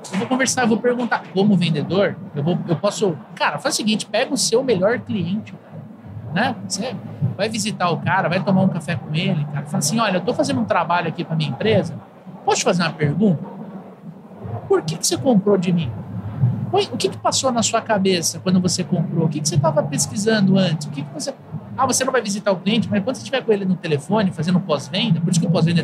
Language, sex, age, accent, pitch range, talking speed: Portuguese, male, 50-69, Brazilian, 170-220 Hz, 230 wpm